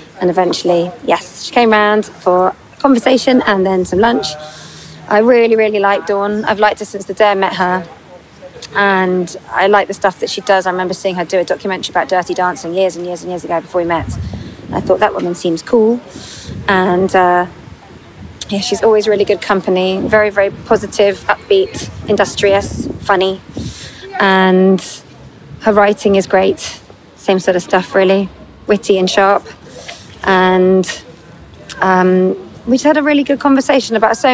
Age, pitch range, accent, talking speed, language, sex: 30-49, 185-210 Hz, British, 170 wpm, English, female